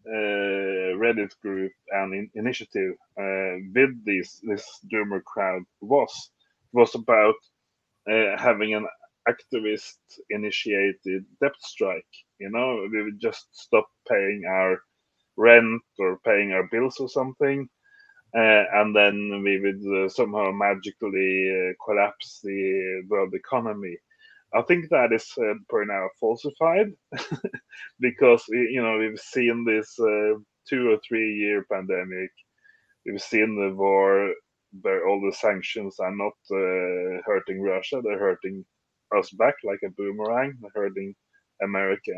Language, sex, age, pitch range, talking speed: English, male, 30-49, 100-125 Hz, 135 wpm